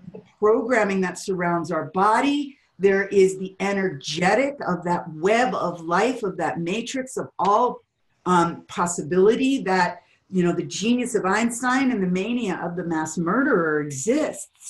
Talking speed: 150 wpm